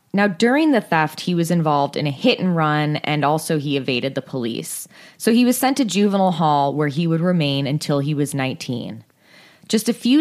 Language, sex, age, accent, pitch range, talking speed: English, female, 20-39, American, 150-200 Hz, 200 wpm